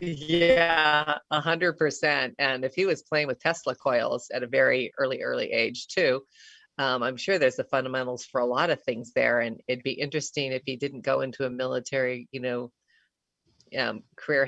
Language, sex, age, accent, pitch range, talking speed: English, female, 30-49, American, 130-145 Hz, 190 wpm